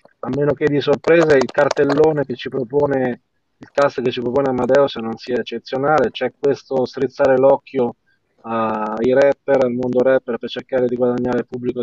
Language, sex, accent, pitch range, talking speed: Italian, male, native, 125-145 Hz, 170 wpm